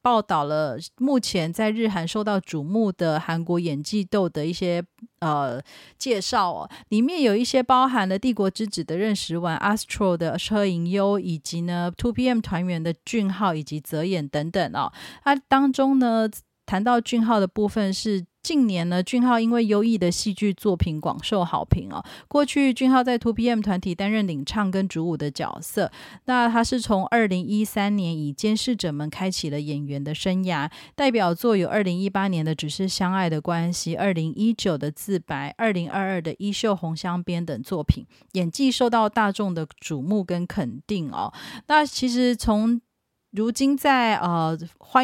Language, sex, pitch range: Chinese, female, 175-220 Hz